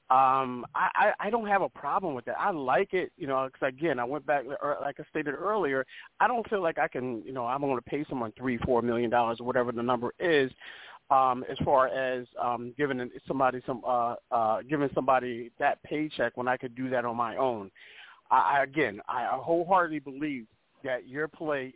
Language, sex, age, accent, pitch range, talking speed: English, male, 40-59, American, 125-150 Hz, 210 wpm